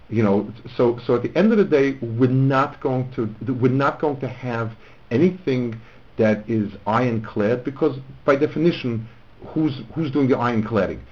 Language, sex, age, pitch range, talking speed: English, male, 50-69, 100-130 Hz, 175 wpm